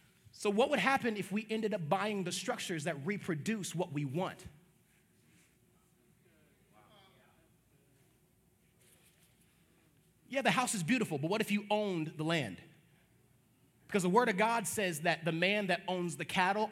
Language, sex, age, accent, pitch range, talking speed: English, male, 30-49, American, 145-200 Hz, 145 wpm